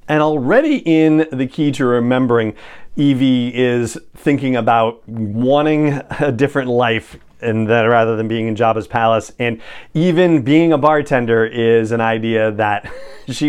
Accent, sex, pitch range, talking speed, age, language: American, male, 110-135 Hz, 145 wpm, 40-59, English